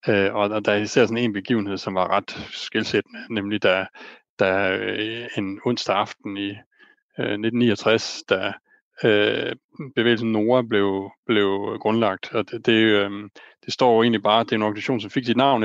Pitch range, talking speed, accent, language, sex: 105-125 Hz, 175 wpm, native, Danish, male